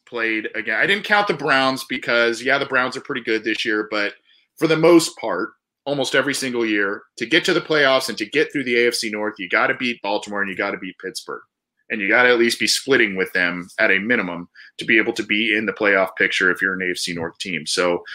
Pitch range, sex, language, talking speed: 120-180 Hz, male, English, 255 wpm